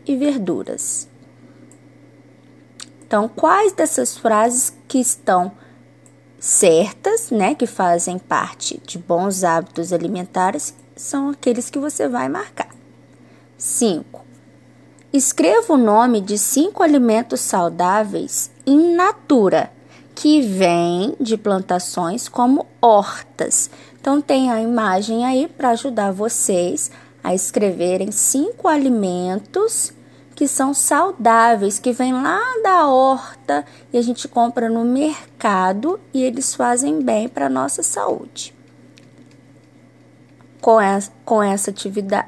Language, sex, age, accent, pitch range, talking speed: Portuguese, female, 20-39, Brazilian, 195-280 Hz, 105 wpm